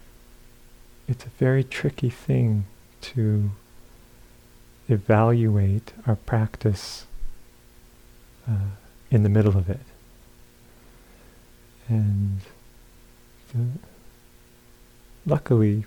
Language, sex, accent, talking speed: English, male, American, 70 wpm